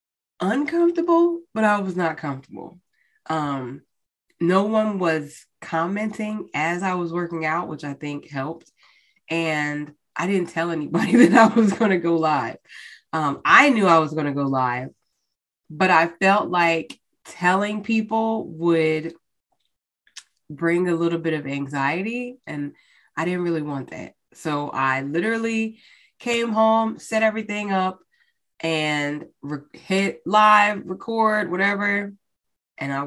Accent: American